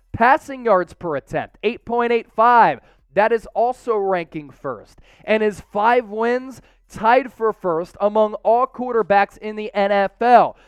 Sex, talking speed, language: male, 130 wpm, English